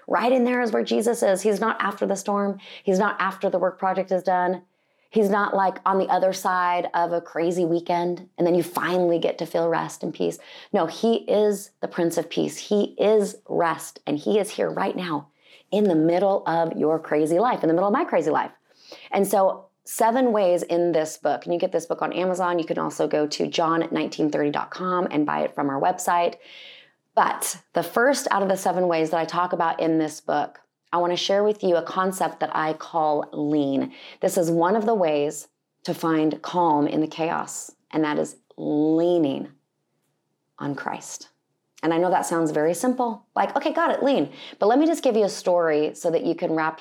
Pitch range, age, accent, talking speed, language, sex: 160-195 Hz, 30-49, American, 215 wpm, English, female